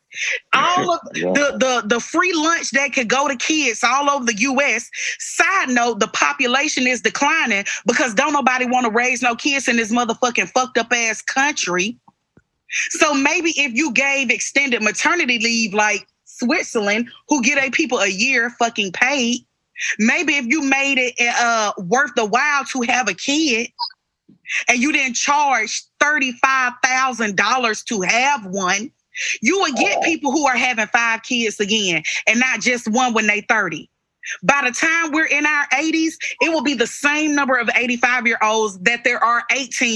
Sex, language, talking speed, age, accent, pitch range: female, English, 175 wpm, 30-49, American, 230-285 Hz